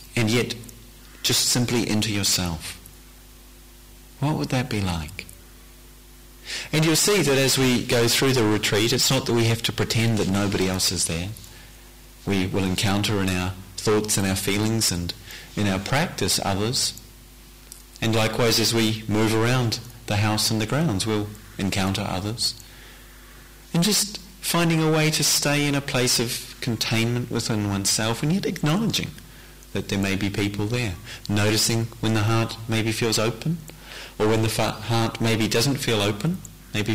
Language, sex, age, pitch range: English, male, 40-59, 100-125 Hz